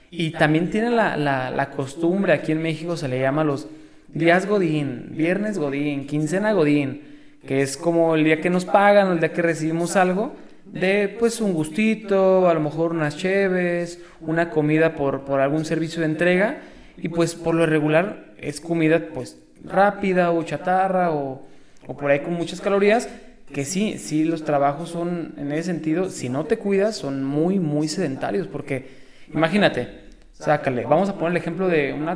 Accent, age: Mexican, 20-39